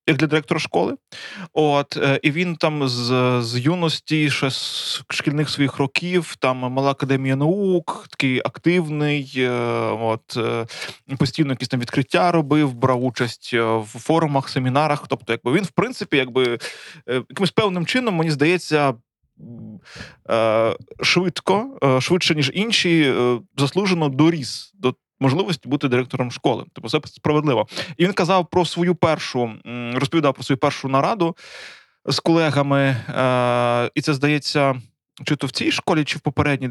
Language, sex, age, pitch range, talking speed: Ukrainian, male, 20-39, 130-160 Hz, 135 wpm